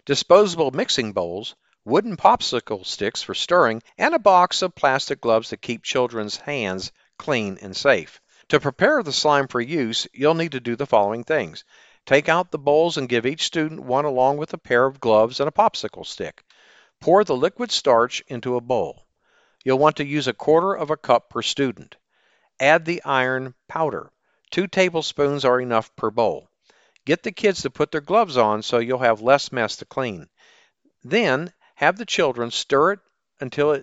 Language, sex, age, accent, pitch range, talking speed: English, male, 50-69, American, 120-160 Hz, 185 wpm